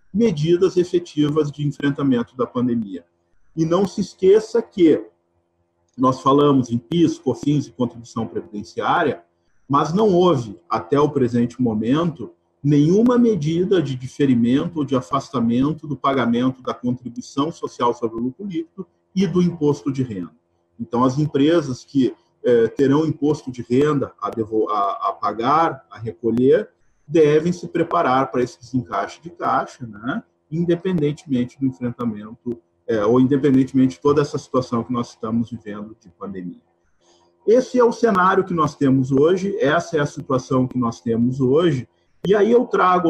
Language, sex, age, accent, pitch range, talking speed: Portuguese, male, 50-69, Brazilian, 120-170 Hz, 145 wpm